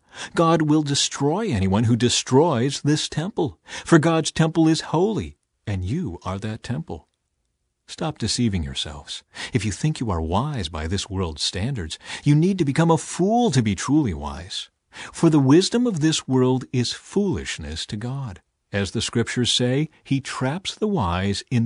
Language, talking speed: English, 165 wpm